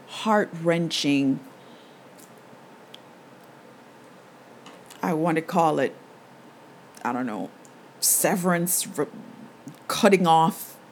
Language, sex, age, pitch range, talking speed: English, female, 50-69, 150-180 Hz, 65 wpm